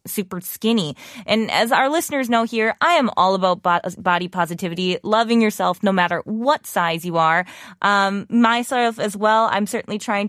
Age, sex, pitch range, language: 20-39, female, 195-285 Hz, Korean